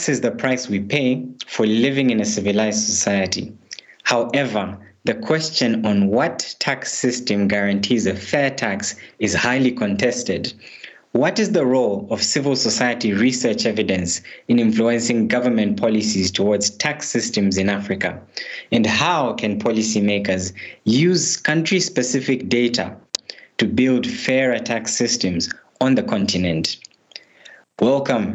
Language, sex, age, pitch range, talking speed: English, male, 20-39, 100-130 Hz, 125 wpm